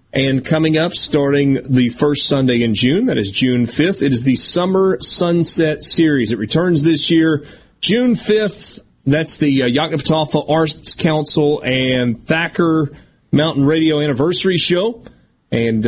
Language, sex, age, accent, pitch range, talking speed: English, male, 30-49, American, 130-155 Hz, 145 wpm